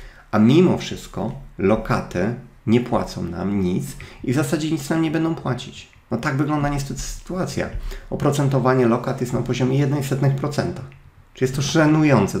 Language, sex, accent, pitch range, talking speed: Polish, male, native, 125-145 Hz, 150 wpm